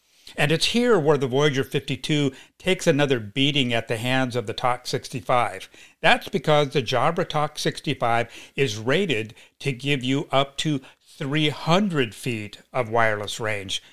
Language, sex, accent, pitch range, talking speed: English, male, American, 120-155 Hz, 150 wpm